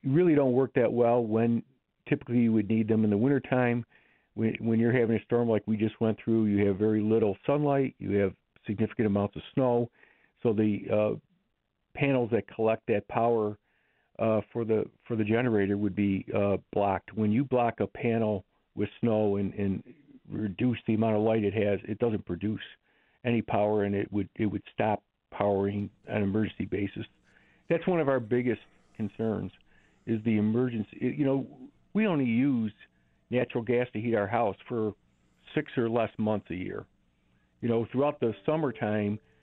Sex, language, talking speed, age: male, English, 180 wpm, 50-69